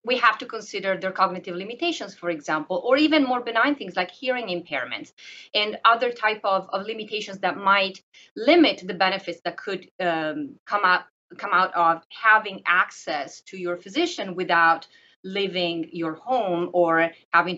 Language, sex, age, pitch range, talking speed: English, female, 30-49, 180-250 Hz, 155 wpm